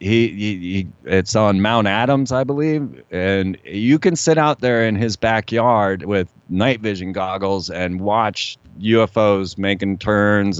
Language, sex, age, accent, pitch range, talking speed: English, male, 30-49, American, 95-125 Hz, 155 wpm